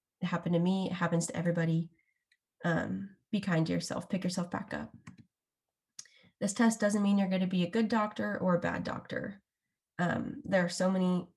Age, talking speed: 20-39, 195 wpm